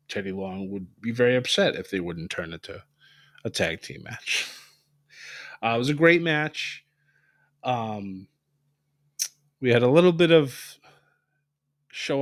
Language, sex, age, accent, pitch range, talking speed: English, male, 30-49, American, 105-145 Hz, 145 wpm